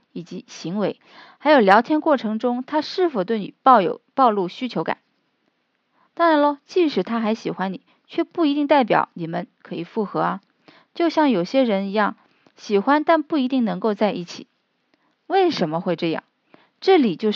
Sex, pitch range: female, 195-295 Hz